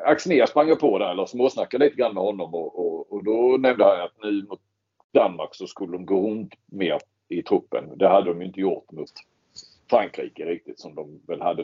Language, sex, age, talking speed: Swedish, male, 40-59, 205 wpm